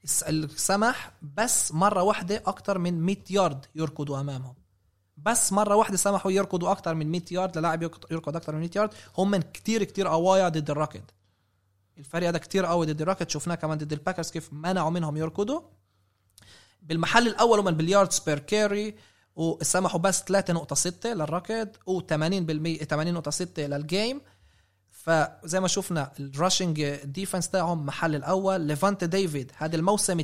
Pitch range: 150-190 Hz